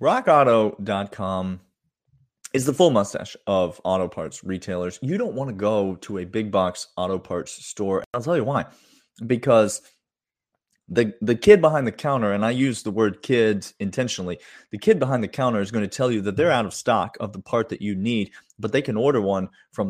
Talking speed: 200 wpm